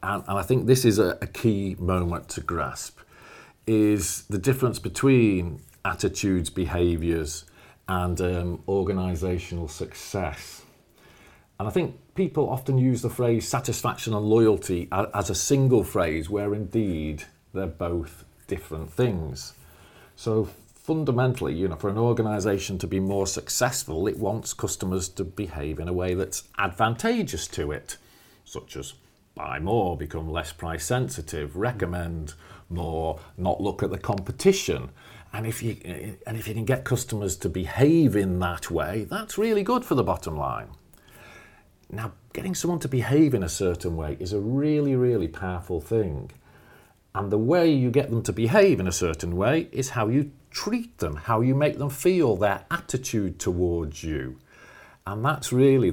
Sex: male